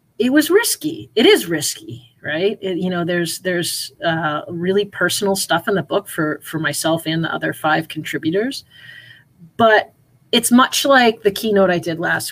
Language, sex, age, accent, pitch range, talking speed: English, female, 30-49, American, 150-205 Hz, 175 wpm